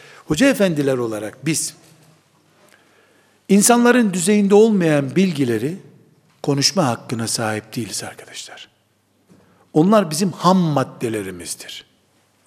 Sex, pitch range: male, 150-225 Hz